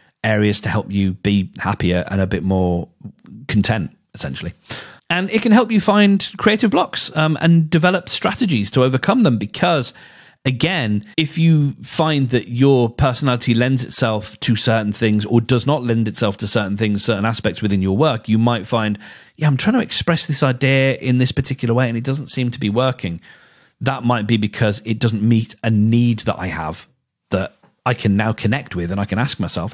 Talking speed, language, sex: 195 wpm, English, male